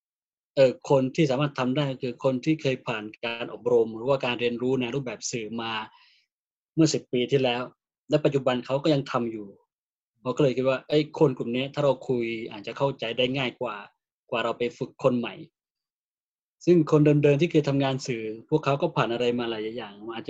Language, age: Thai, 20-39